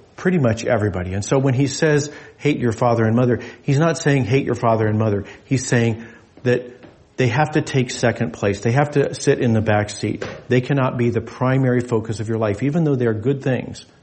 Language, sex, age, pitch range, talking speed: English, male, 40-59, 105-130 Hz, 225 wpm